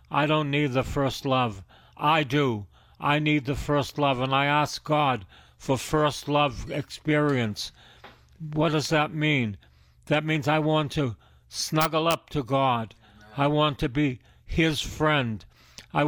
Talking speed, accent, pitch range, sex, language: 155 wpm, American, 115-155 Hz, male, English